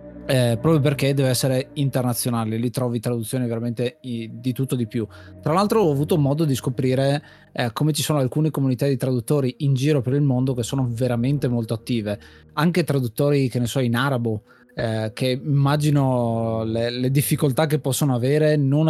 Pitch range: 120-145 Hz